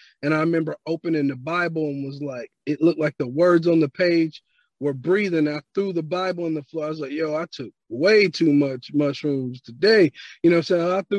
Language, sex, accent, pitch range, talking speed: English, male, American, 145-175 Hz, 230 wpm